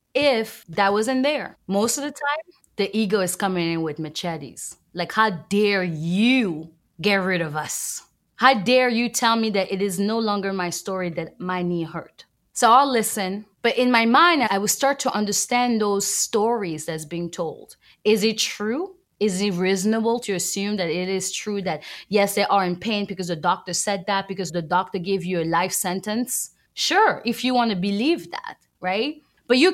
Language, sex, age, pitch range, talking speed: Czech, female, 20-39, 180-235 Hz, 195 wpm